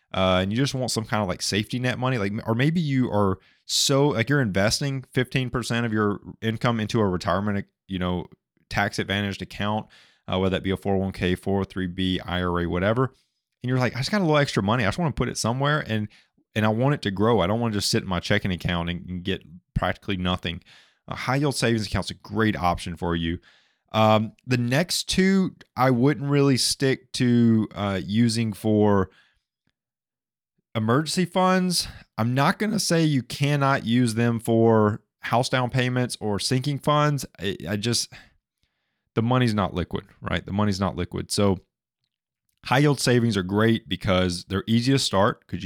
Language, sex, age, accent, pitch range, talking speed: English, male, 20-39, American, 95-125 Hz, 190 wpm